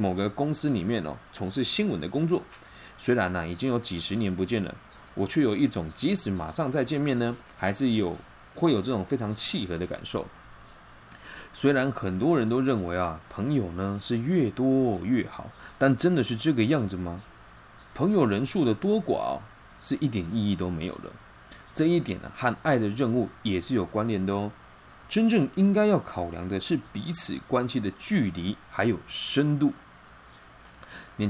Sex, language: male, Chinese